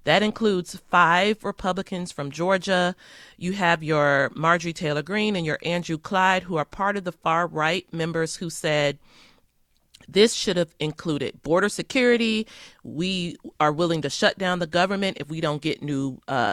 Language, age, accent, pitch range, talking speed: English, 40-59, American, 155-200 Hz, 165 wpm